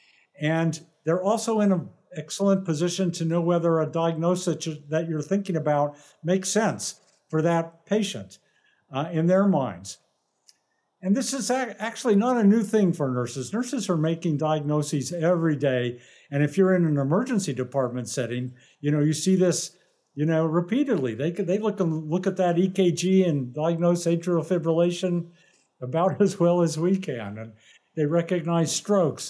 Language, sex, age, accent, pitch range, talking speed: English, male, 50-69, American, 145-185 Hz, 160 wpm